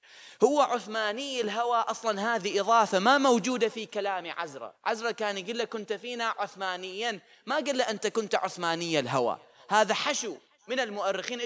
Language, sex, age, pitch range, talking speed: Arabic, male, 30-49, 145-215 Hz, 150 wpm